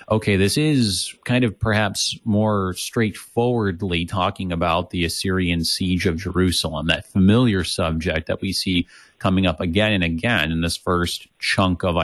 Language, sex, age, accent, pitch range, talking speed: English, male, 30-49, American, 85-105 Hz, 155 wpm